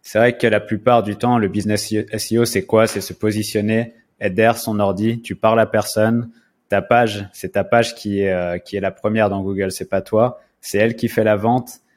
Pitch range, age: 100-115 Hz, 20-39